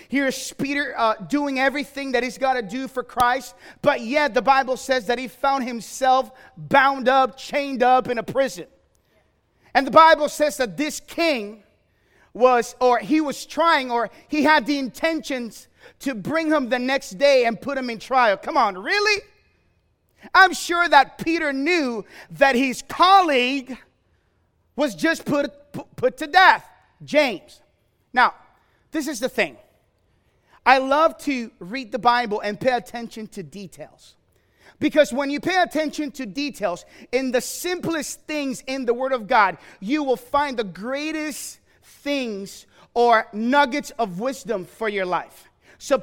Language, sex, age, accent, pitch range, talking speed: English, male, 30-49, American, 240-290 Hz, 155 wpm